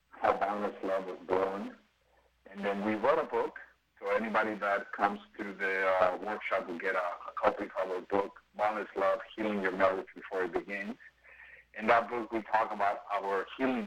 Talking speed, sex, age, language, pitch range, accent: 180 wpm, male, 50-69, English, 95-115 Hz, American